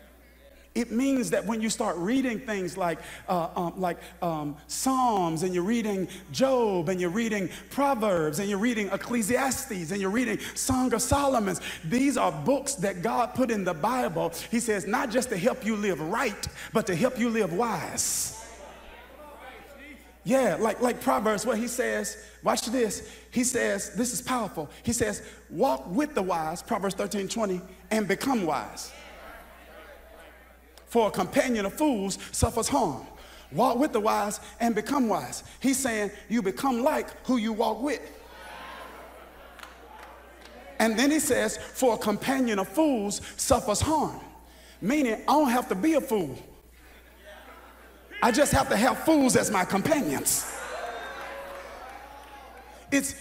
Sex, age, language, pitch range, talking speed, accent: male, 40-59, English, 195-260 Hz, 150 wpm, American